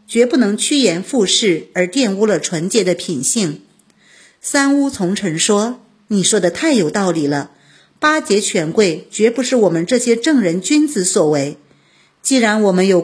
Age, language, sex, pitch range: 50-69, Chinese, female, 180-250 Hz